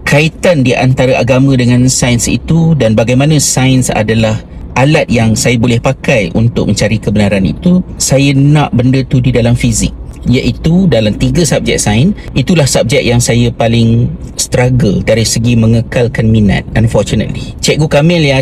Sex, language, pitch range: male, Malay, 120-150 Hz